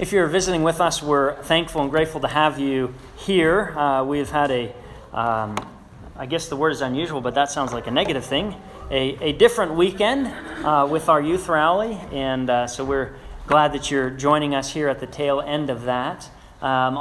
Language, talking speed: English, 200 wpm